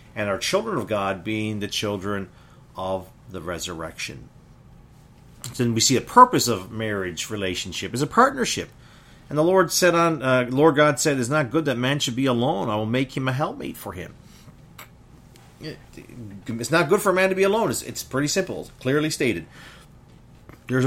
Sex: male